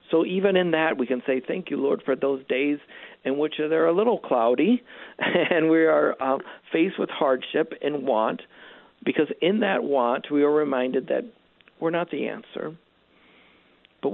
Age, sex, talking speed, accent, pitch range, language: 50-69, male, 175 wpm, American, 125-160 Hz, English